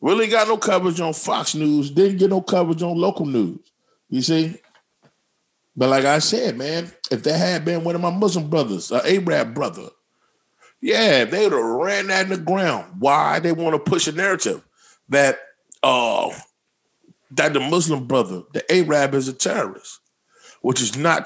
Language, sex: English, male